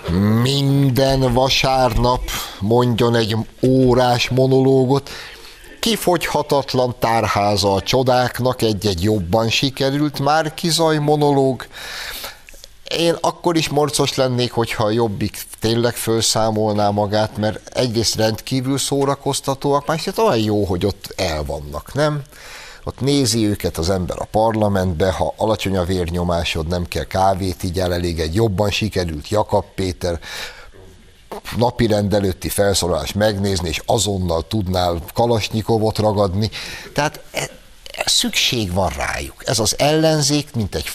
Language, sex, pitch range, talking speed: Hungarian, male, 95-130 Hz, 115 wpm